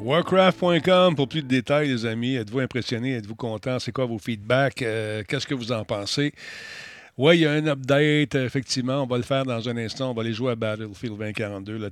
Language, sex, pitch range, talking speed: French, male, 115-140 Hz, 220 wpm